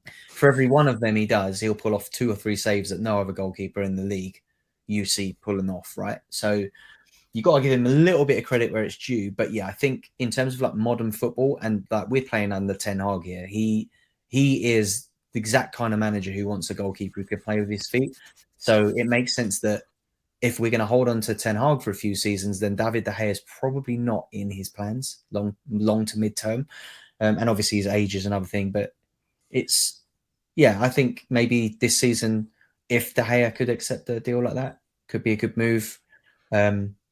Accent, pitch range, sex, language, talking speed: British, 105-120 Hz, male, English, 225 wpm